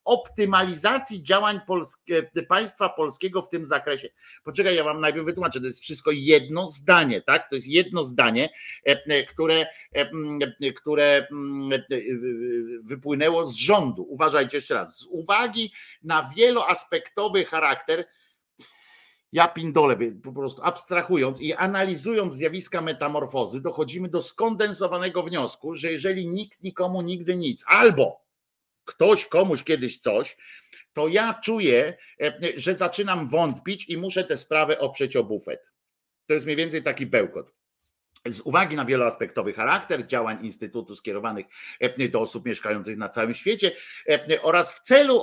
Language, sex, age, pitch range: Polish, male, 50-69, 150-210 Hz